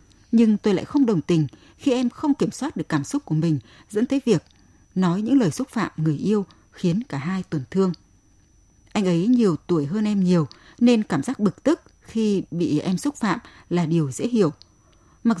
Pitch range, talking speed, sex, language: 160-220 Hz, 205 wpm, female, Vietnamese